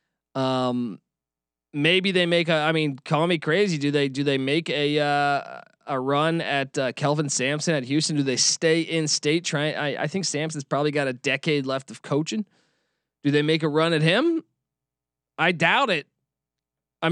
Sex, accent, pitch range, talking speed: male, American, 140-175 Hz, 185 wpm